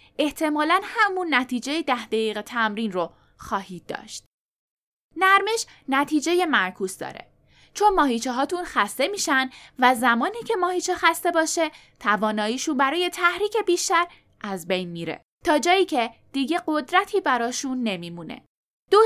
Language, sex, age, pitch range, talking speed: Persian, female, 10-29, 230-360 Hz, 125 wpm